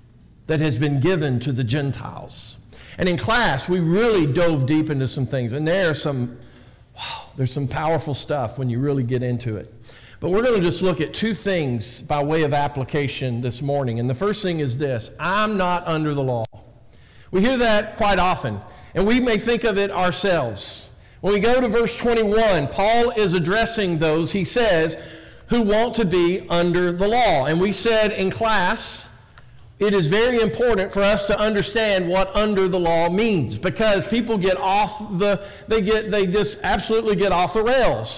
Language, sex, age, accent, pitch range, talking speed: English, male, 50-69, American, 140-210 Hz, 190 wpm